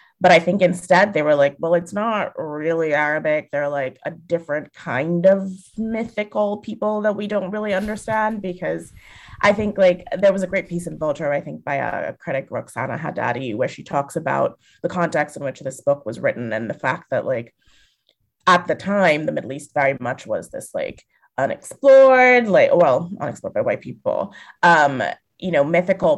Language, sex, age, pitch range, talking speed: English, female, 20-39, 160-210 Hz, 185 wpm